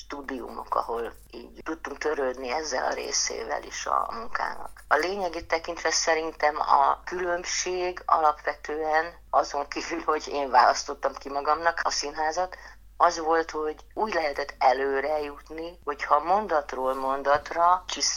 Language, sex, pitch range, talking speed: Hungarian, female, 145-170 Hz, 120 wpm